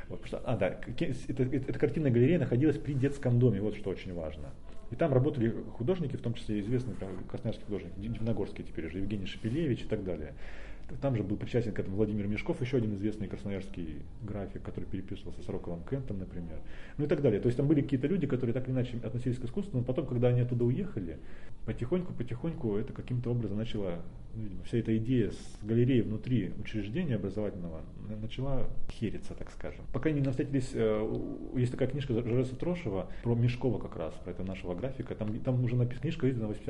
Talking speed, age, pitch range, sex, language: 195 wpm, 30-49, 100-125 Hz, male, Russian